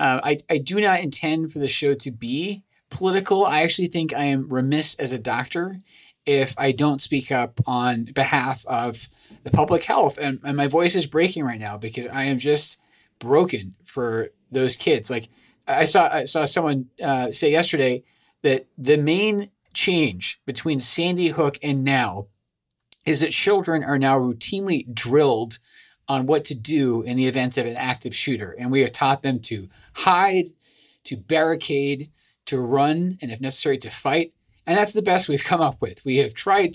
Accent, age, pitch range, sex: American, 30-49, 130-160 Hz, male